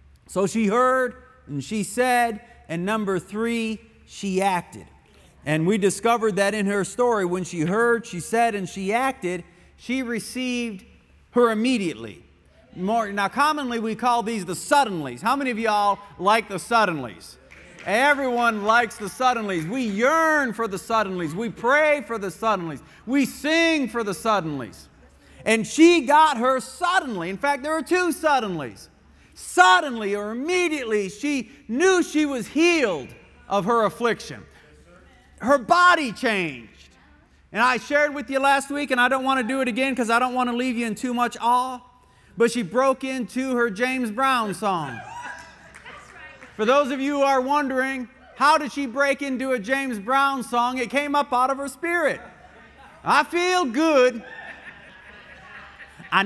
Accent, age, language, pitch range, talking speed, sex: American, 50-69, English, 200-270 Hz, 160 wpm, male